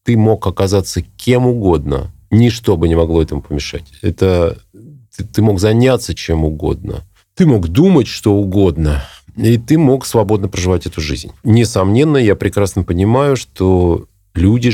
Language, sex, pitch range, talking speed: Russian, male, 85-105 Hz, 145 wpm